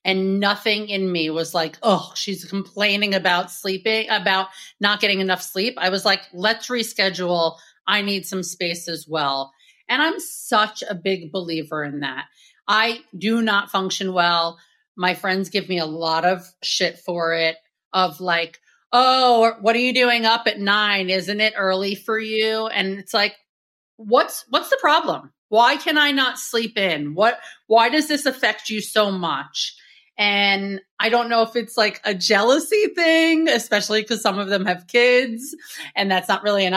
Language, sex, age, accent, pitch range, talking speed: English, female, 30-49, American, 180-225 Hz, 175 wpm